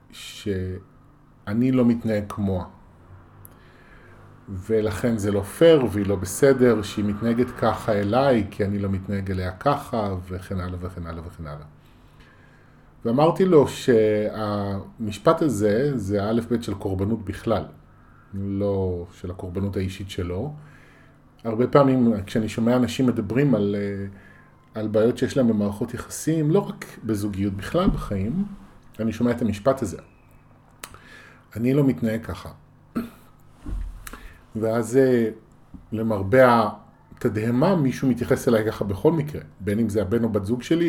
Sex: male